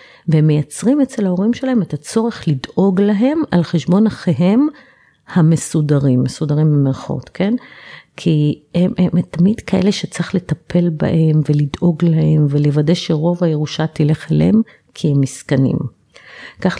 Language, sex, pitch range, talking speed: Hebrew, female, 150-180 Hz, 125 wpm